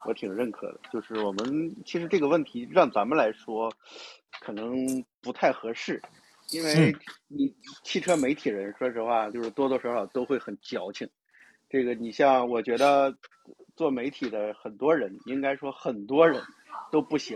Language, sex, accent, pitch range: Chinese, male, native, 120-170 Hz